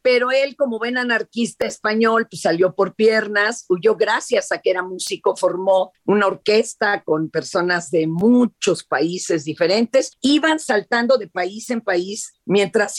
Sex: female